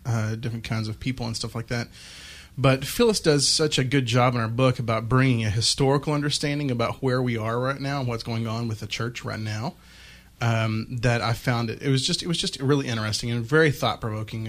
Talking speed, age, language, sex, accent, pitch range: 230 wpm, 30-49, English, male, American, 110-130 Hz